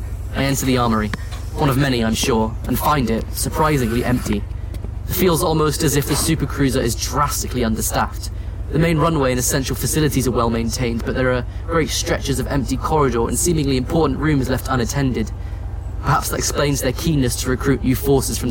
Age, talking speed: 20-39, 180 wpm